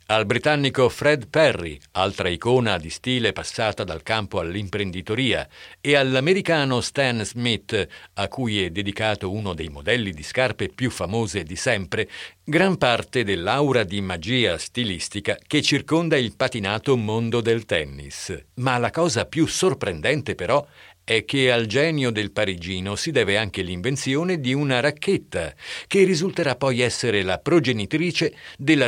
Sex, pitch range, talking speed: male, 100-145 Hz, 145 wpm